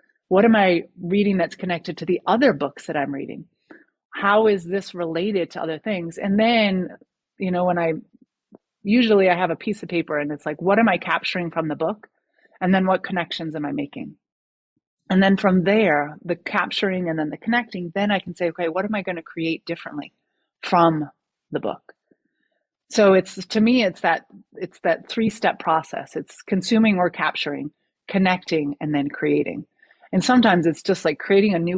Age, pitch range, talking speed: 30-49, 160-200 Hz, 195 wpm